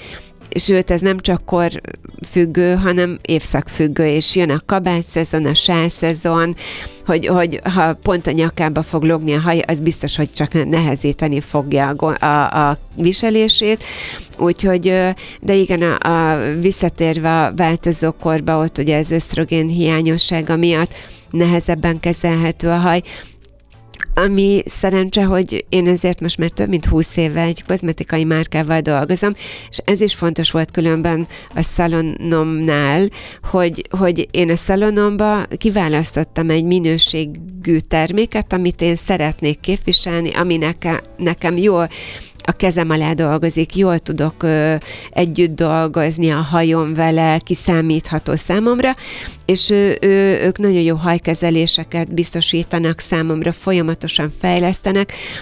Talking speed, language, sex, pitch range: 120 wpm, Hungarian, female, 160-180 Hz